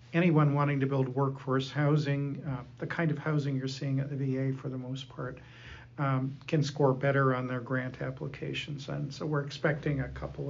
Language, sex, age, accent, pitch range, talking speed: English, male, 50-69, American, 135-160 Hz, 195 wpm